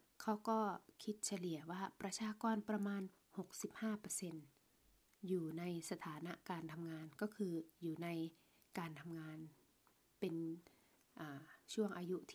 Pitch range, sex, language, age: 165-205 Hz, female, Thai, 20-39